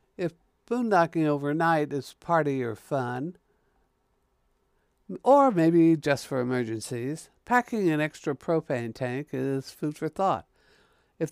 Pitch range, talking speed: 140-185 Hz, 115 wpm